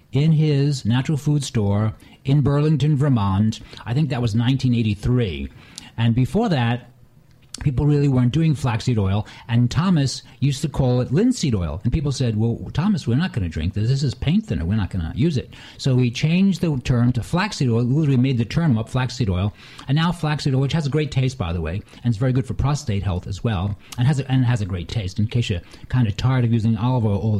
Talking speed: 230 wpm